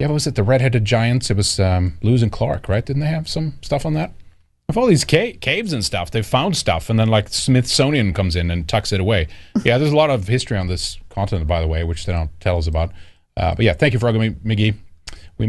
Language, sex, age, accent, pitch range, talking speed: English, male, 30-49, American, 90-150 Hz, 265 wpm